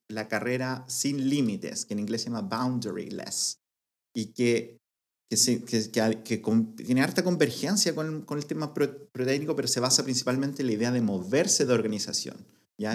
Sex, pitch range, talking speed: male, 110-140 Hz, 185 wpm